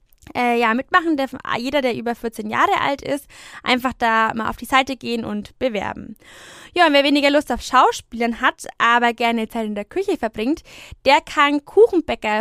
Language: German